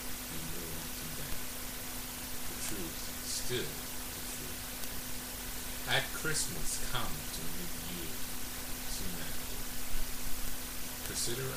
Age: 50-69